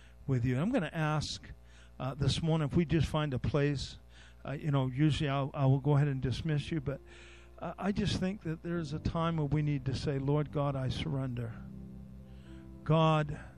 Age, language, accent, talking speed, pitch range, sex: 50-69, English, American, 205 wpm, 105-150 Hz, male